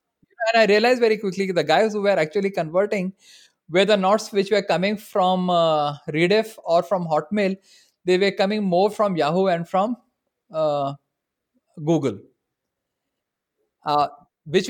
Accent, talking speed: Indian, 140 wpm